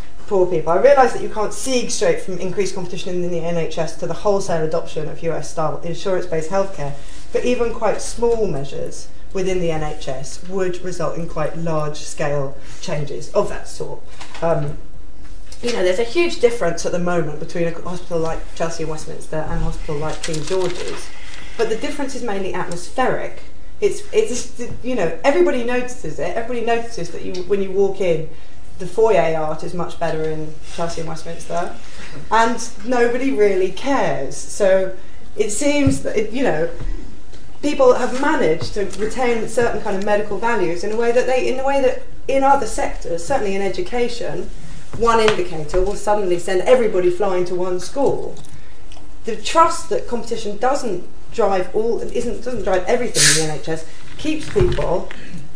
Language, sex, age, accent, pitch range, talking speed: English, female, 30-49, British, 165-240 Hz, 165 wpm